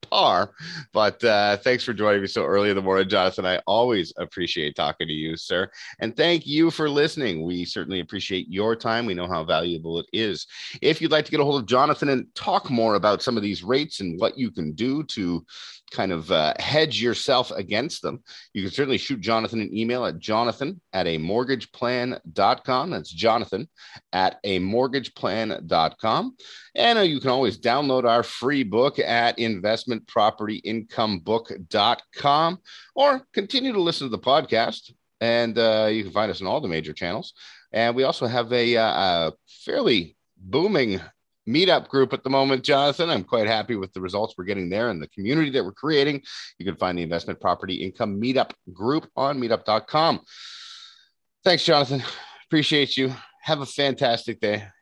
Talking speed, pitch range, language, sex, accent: 180 wpm, 100-140 Hz, English, male, American